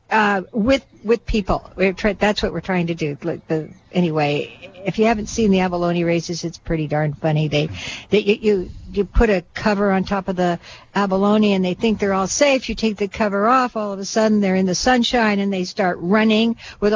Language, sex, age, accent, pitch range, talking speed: English, female, 60-79, American, 190-230 Hz, 220 wpm